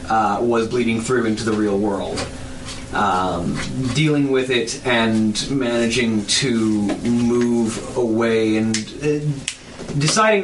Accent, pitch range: American, 110-135 Hz